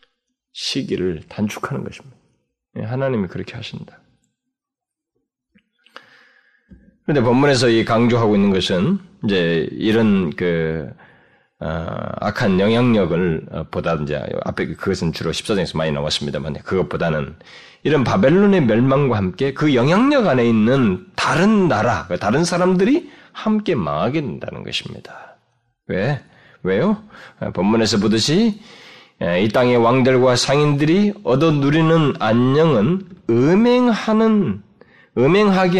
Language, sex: Korean, male